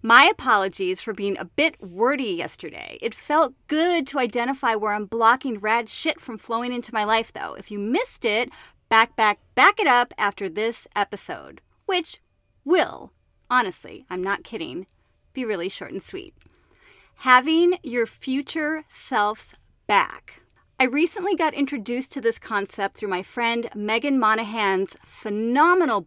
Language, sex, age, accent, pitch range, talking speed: English, female, 30-49, American, 205-290 Hz, 150 wpm